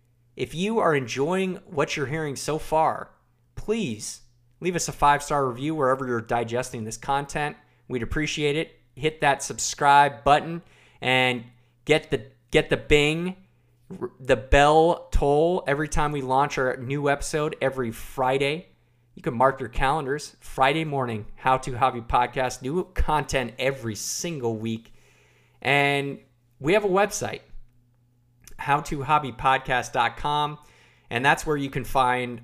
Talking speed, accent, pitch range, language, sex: 135 wpm, American, 120-150 Hz, English, male